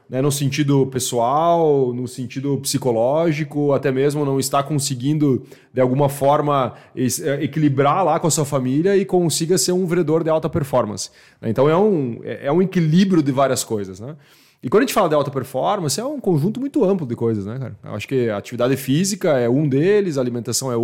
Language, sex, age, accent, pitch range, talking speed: Portuguese, male, 20-39, Brazilian, 130-170 Hz, 195 wpm